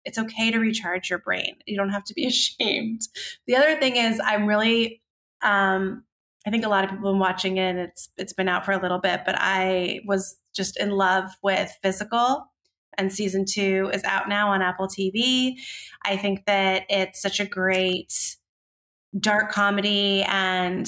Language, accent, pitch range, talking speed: English, American, 190-225 Hz, 185 wpm